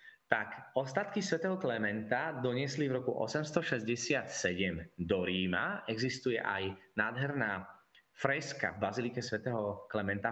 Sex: male